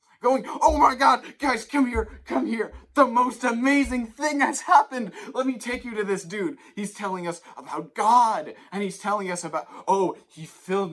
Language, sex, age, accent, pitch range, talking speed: English, male, 20-39, American, 160-260 Hz, 190 wpm